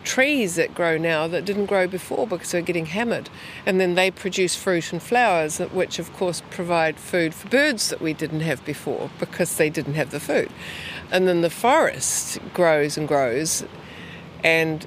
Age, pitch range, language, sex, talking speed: 60-79, 170-200 Hz, English, female, 185 wpm